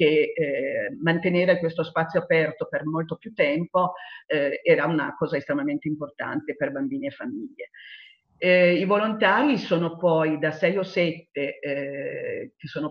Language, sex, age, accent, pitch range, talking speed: Italian, female, 40-59, native, 160-205 Hz, 150 wpm